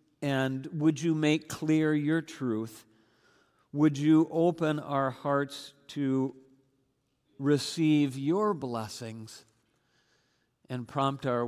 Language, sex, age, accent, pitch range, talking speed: English, male, 50-69, American, 125-160 Hz, 100 wpm